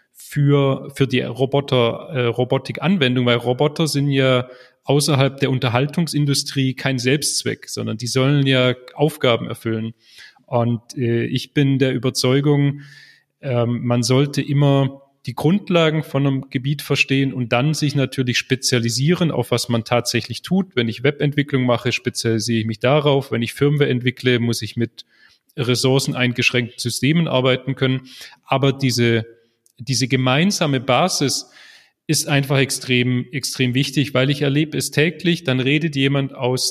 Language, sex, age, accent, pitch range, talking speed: German, male, 30-49, German, 125-145 Hz, 140 wpm